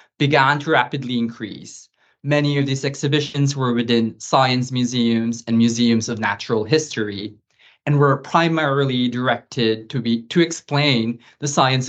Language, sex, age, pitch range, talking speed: English, male, 20-39, 115-140 Hz, 135 wpm